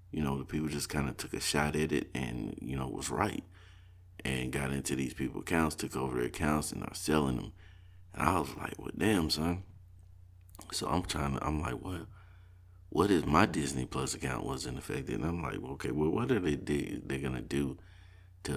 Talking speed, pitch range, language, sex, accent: 210 wpm, 70-90 Hz, English, male, American